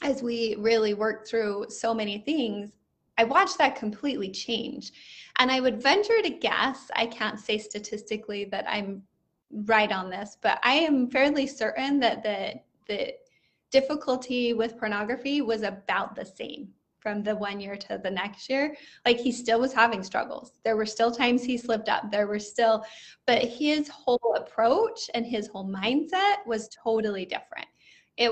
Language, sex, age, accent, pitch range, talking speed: English, female, 20-39, American, 215-265 Hz, 165 wpm